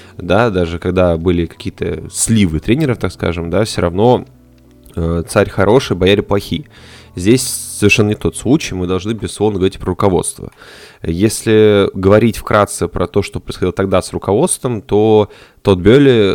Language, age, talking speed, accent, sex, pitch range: Russian, 20-39, 150 wpm, native, male, 90-110 Hz